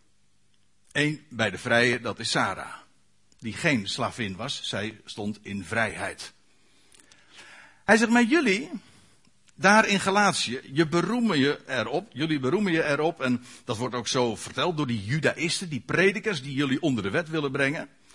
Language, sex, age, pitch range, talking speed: Dutch, male, 60-79, 120-195 Hz, 160 wpm